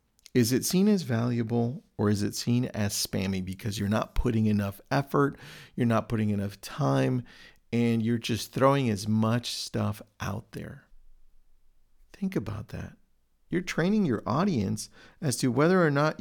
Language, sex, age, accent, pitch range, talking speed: English, male, 50-69, American, 110-150 Hz, 160 wpm